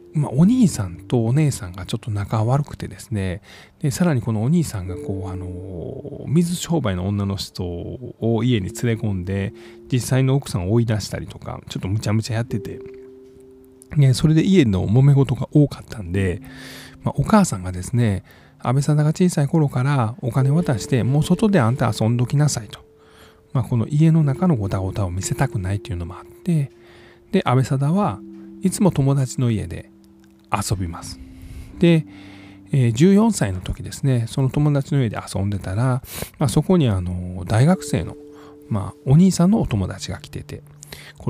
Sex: male